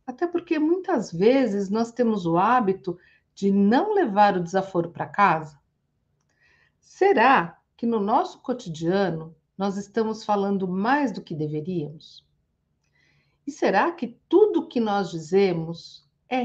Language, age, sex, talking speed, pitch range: Portuguese, 50-69, female, 130 wpm, 170-245 Hz